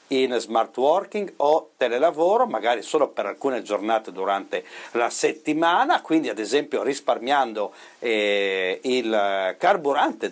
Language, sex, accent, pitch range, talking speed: Italian, male, native, 115-155 Hz, 115 wpm